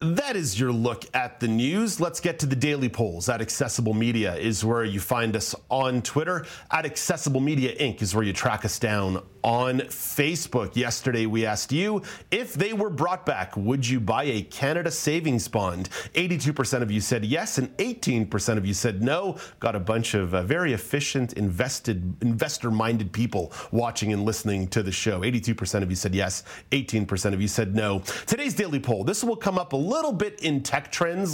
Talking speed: 190 wpm